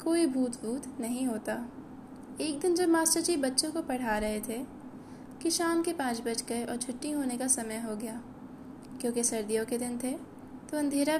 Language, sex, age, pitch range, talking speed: Hindi, female, 10-29, 240-285 Hz, 190 wpm